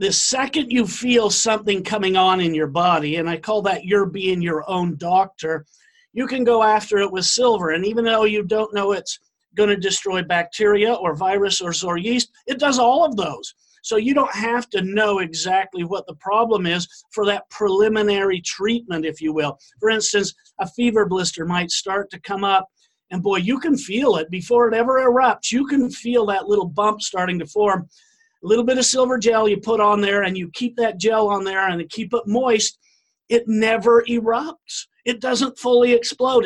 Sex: male